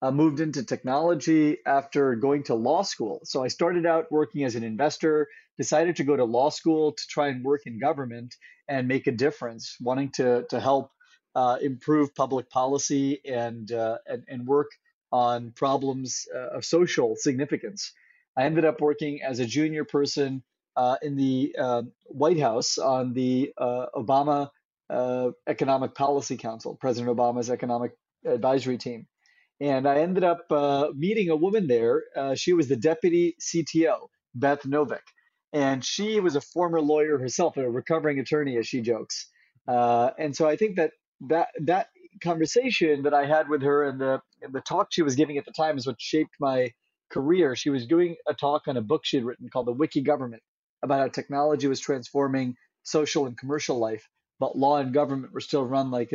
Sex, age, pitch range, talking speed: male, 30-49, 130-155 Hz, 185 wpm